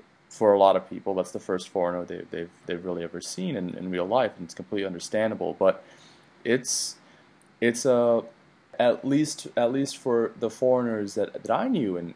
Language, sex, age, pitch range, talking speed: English, male, 20-39, 95-120 Hz, 190 wpm